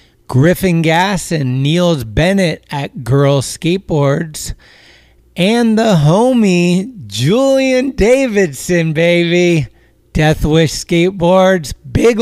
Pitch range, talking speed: 130-170 Hz, 90 wpm